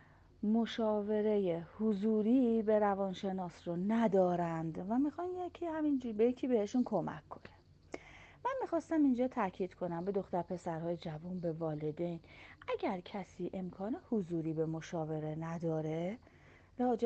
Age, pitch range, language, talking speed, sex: 30-49, 175-235 Hz, Persian, 120 wpm, female